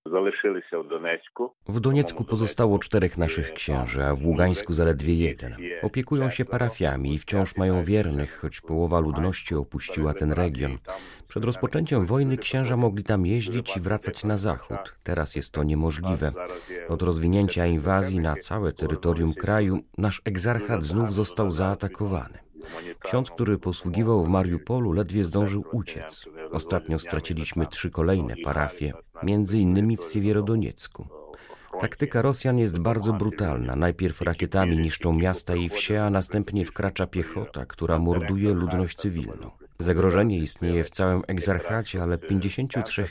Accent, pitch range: native, 85-110 Hz